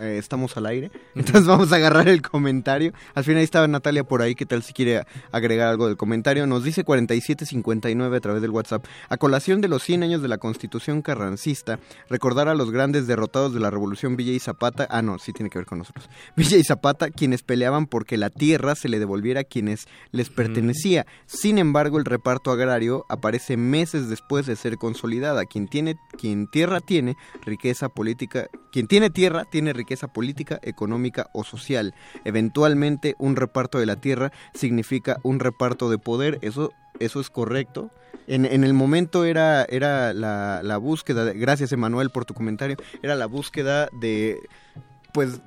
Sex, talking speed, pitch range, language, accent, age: male, 180 wpm, 115-145 Hz, Spanish, Mexican, 20-39